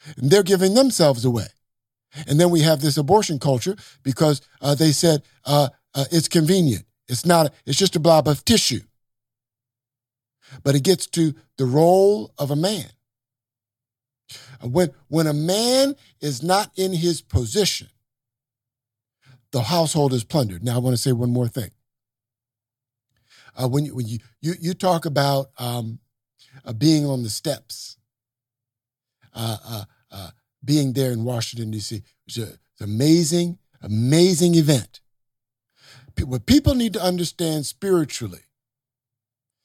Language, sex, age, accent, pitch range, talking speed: English, male, 50-69, American, 120-155 Hz, 145 wpm